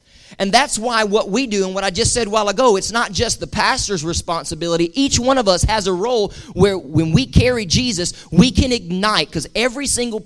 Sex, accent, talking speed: male, American, 220 wpm